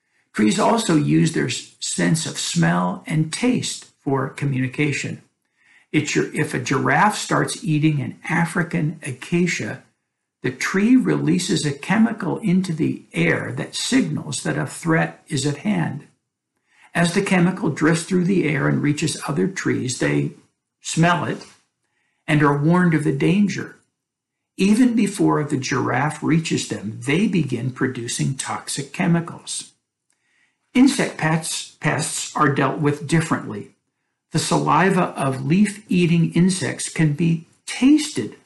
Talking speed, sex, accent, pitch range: 125 wpm, male, American, 140-175 Hz